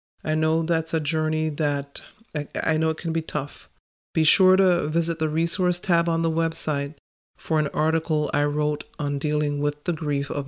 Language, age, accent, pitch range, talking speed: English, 40-59, American, 145-165 Hz, 190 wpm